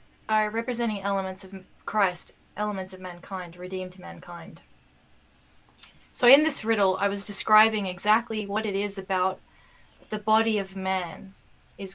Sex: female